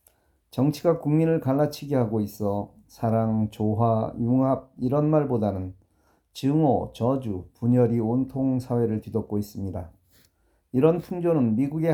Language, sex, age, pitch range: Korean, male, 40-59, 105-135 Hz